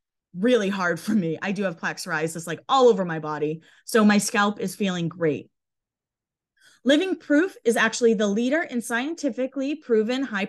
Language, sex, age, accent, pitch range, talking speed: English, female, 20-39, American, 190-270 Hz, 165 wpm